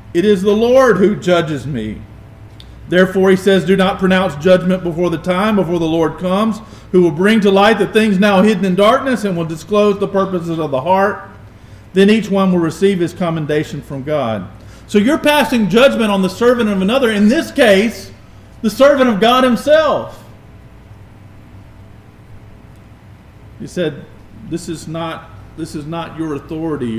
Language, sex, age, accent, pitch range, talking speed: English, male, 40-59, American, 110-185 Hz, 170 wpm